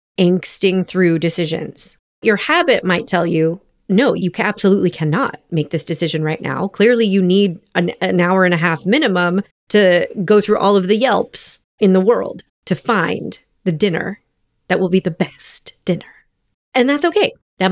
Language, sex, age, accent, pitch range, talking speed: English, female, 30-49, American, 175-250 Hz, 175 wpm